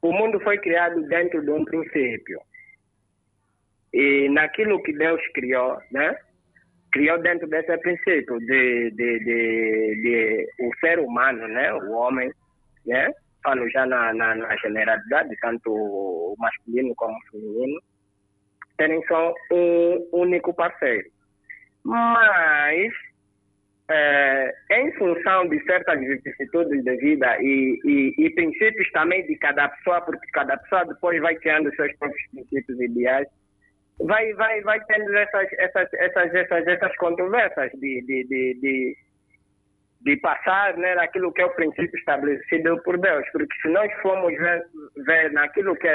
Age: 50-69